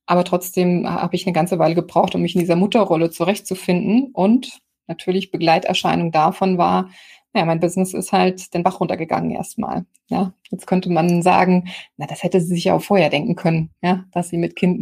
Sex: female